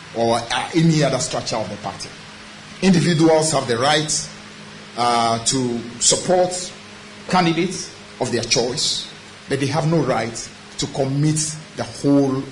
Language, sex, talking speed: English, male, 130 wpm